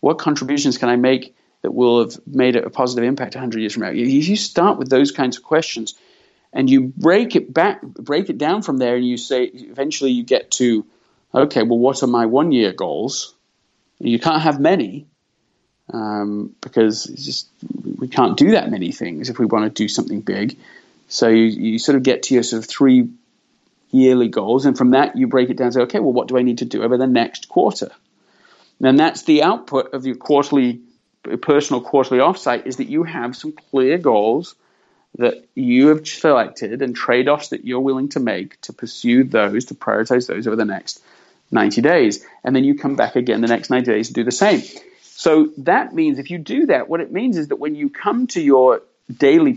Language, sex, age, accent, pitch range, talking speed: English, male, 40-59, British, 125-155 Hz, 210 wpm